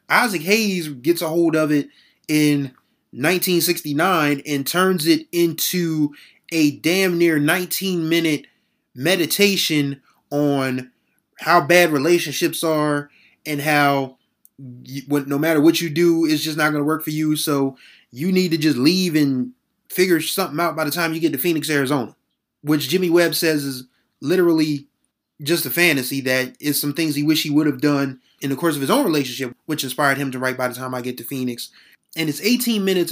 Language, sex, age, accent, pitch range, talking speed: English, male, 20-39, American, 140-175 Hz, 180 wpm